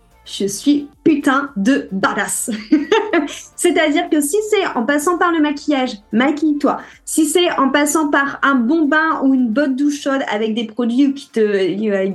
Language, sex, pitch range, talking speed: French, female, 235-300 Hz, 170 wpm